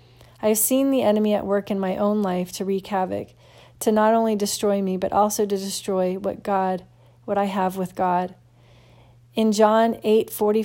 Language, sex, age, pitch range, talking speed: English, female, 40-59, 185-210 Hz, 190 wpm